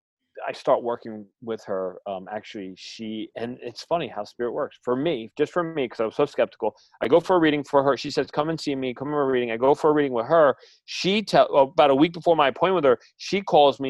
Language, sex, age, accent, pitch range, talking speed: English, male, 40-59, American, 110-150 Hz, 260 wpm